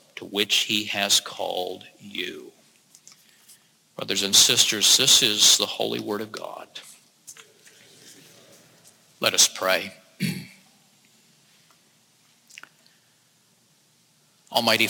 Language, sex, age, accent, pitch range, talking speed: English, male, 50-69, American, 115-140 Hz, 80 wpm